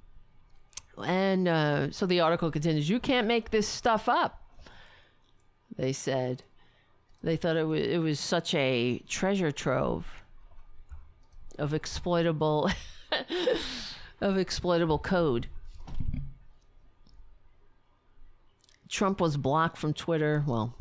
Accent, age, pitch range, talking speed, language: American, 50-69, 125-190 Hz, 100 wpm, English